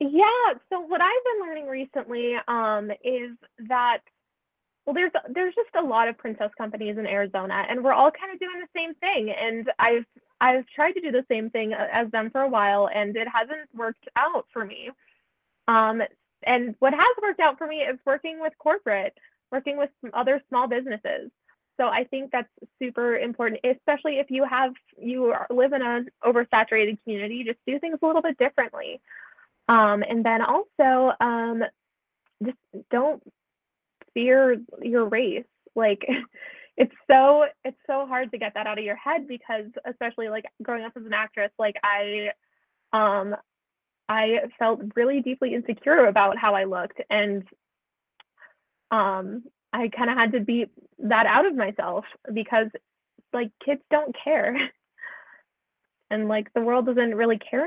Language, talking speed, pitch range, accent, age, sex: English, 165 wpm, 225-285 Hz, American, 20-39, female